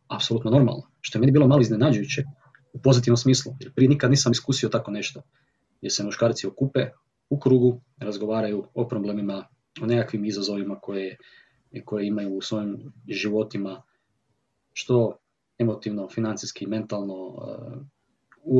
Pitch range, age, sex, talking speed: 105-125 Hz, 30-49, male, 130 wpm